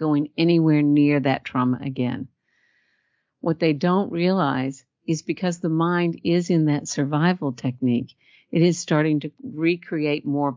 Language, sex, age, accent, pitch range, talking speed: Dutch, female, 50-69, American, 135-160 Hz, 140 wpm